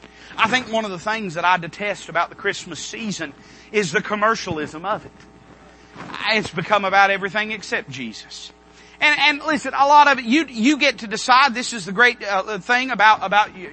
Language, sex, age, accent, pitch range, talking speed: English, male, 30-49, American, 195-265 Hz, 195 wpm